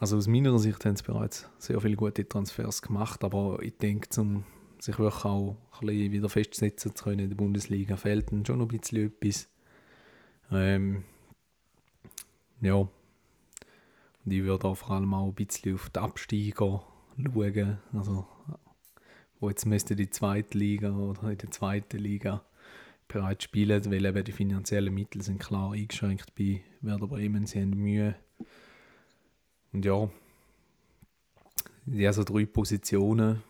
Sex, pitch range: male, 100-110 Hz